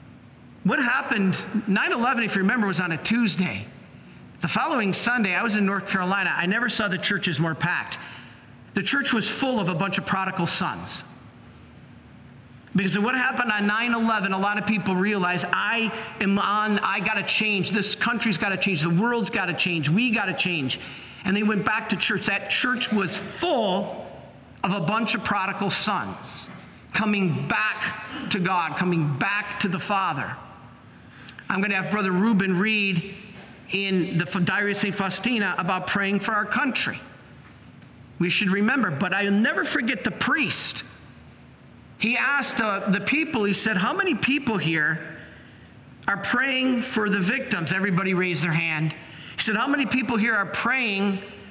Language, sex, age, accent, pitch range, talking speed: English, male, 50-69, American, 180-220 Hz, 165 wpm